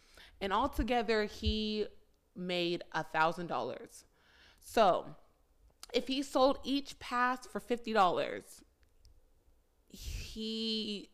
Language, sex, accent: English, female, American